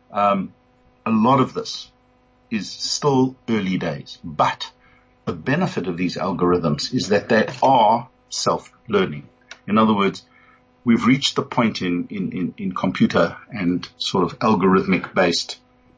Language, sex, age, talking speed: English, male, 50-69, 135 wpm